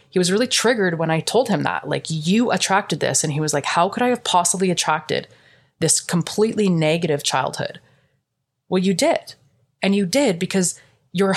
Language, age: English, 20-39